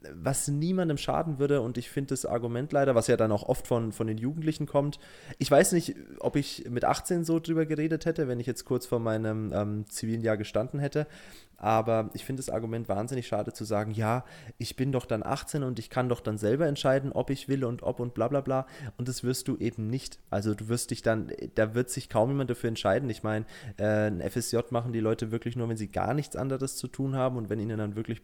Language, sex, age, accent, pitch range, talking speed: German, male, 20-39, German, 110-145 Hz, 240 wpm